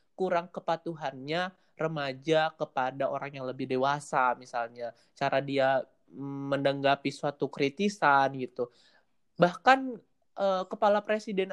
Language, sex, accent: Indonesian, male, native